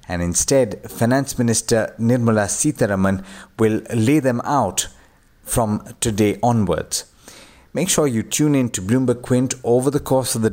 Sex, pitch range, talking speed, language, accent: male, 100-130 Hz, 150 wpm, English, Indian